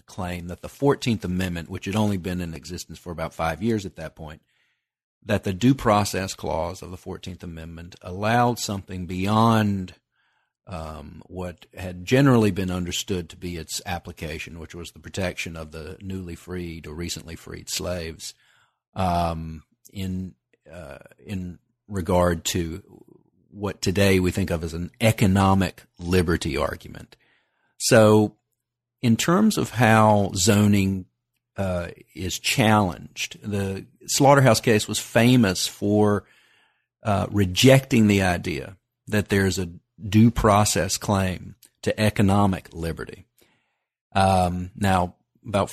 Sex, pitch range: male, 90-105 Hz